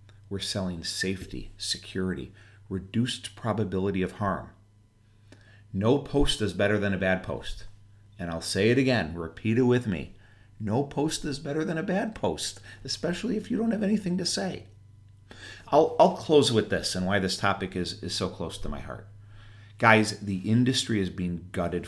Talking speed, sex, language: 175 wpm, male, English